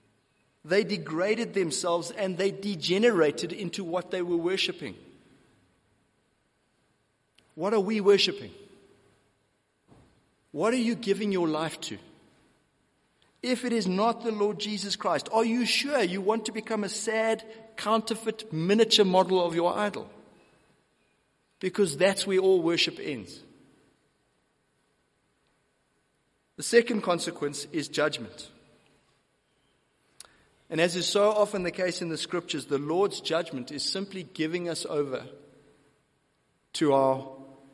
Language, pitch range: English, 145-205 Hz